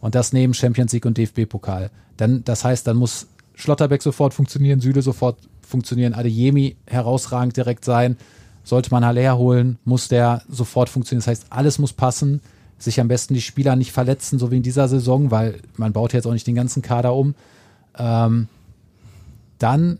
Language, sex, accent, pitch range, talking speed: German, male, German, 115-130 Hz, 175 wpm